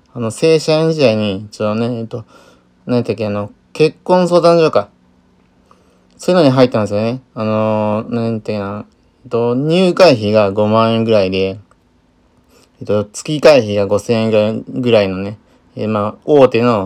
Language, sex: Japanese, male